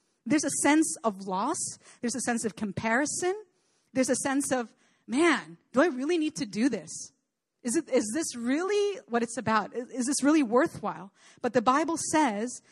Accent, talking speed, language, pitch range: American, 180 wpm, English, 215-275 Hz